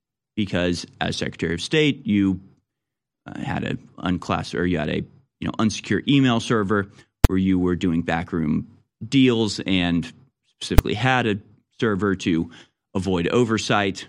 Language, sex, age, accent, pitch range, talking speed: English, male, 30-49, American, 95-130 Hz, 140 wpm